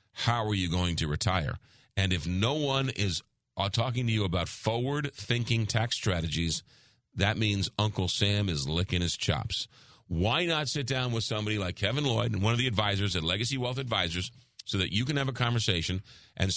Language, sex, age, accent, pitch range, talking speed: English, male, 40-59, American, 95-125 Hz, 190 wpm